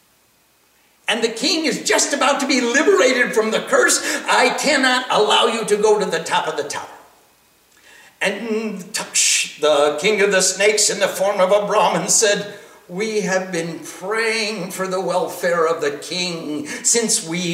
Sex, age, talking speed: male, 60-79, 170 wpm